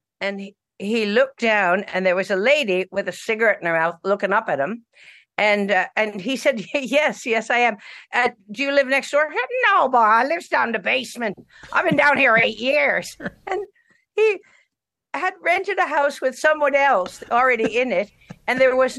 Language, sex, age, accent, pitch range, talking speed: English, female, 60-79, American, 180-270 Hz, 200 wpm